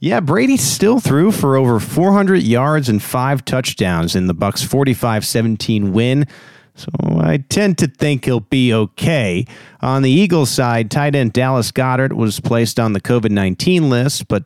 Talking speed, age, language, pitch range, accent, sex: 160 wpm, 40-59, English, 105-140 Hz, American, male